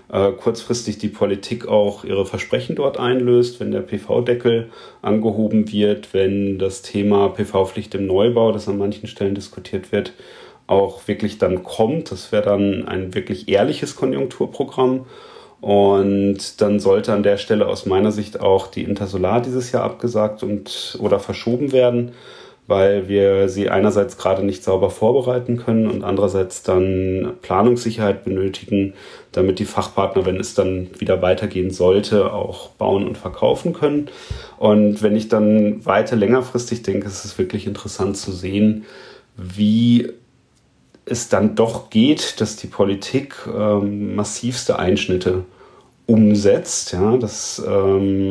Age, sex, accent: 40-59, male, German